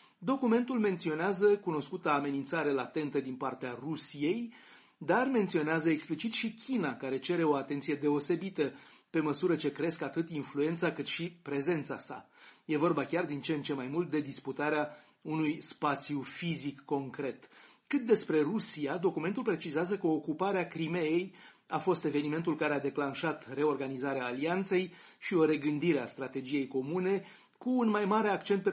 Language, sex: Romanian, male